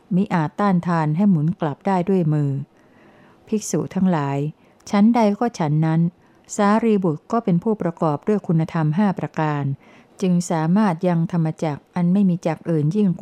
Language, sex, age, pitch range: Thai, female, 60-79, 155-190 Hz